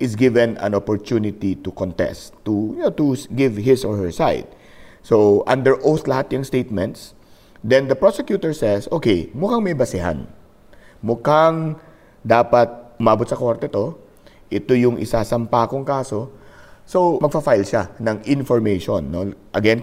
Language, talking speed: English, 150 wpm